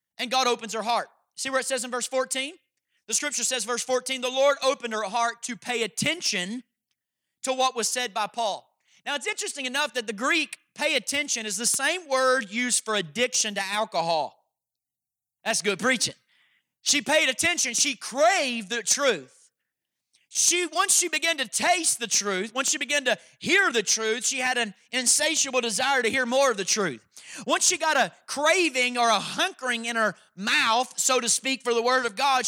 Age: 30-49